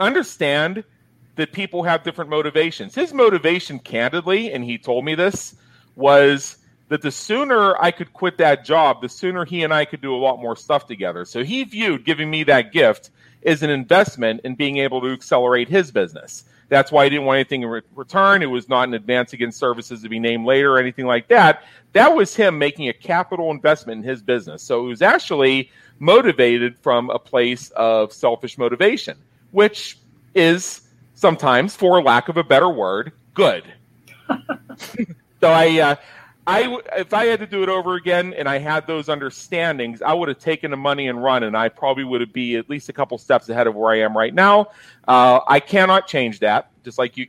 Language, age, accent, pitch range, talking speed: English, 40-59, American, 120-165 Hz, 200 wpm